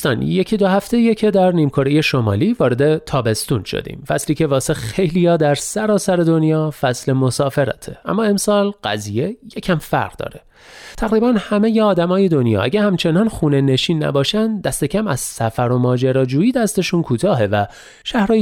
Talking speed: 150 wpm